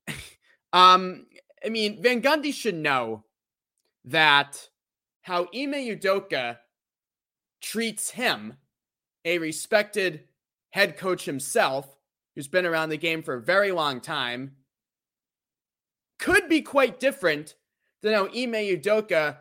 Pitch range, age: 155-215 Hz, 20-39